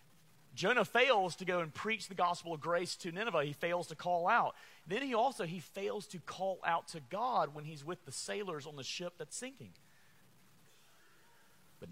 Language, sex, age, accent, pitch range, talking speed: English, male, 30-49, American, 125-175 Hz, 190 wpm